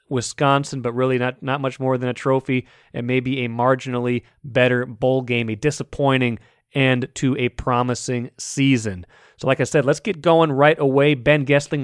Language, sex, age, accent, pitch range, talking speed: English, male, 30-49, American, 120-140 Hz, 175 wpm